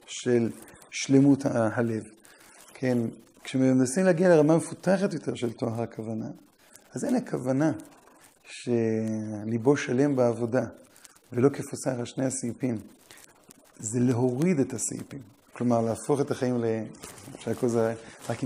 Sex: male